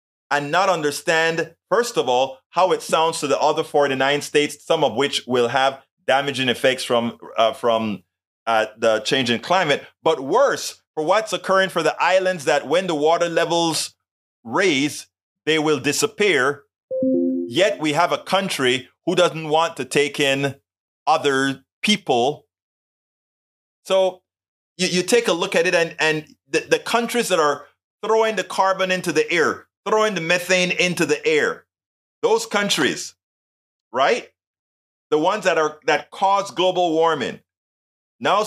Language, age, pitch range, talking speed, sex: English, 30-49, 145-205 Hz, 155 wpm, male